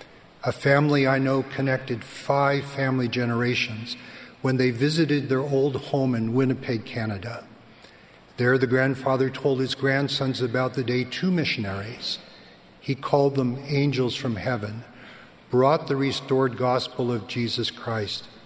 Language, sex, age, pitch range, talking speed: English, male, 50-69, 115-135 Hz, 125 wpm